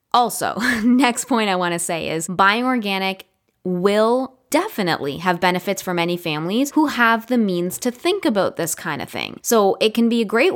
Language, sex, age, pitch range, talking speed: English, female, 10-29, 185-245 Hz, 195 wpm